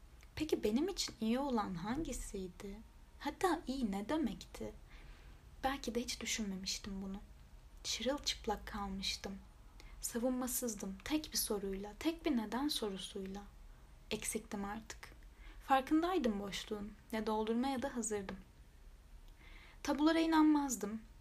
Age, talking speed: 10-29, 100 wpm